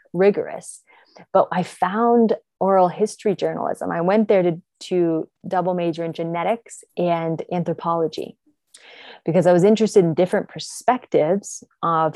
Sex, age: female, 20-39